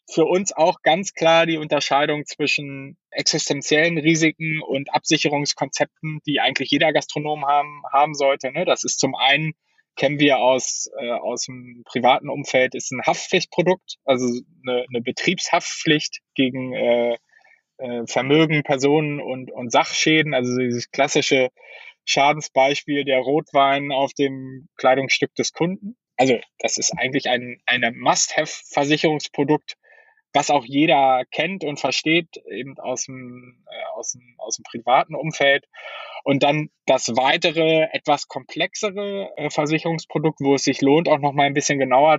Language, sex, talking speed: German, male, 135 wpm